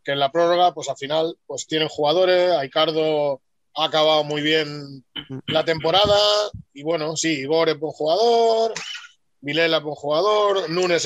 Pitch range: 150-180 Hz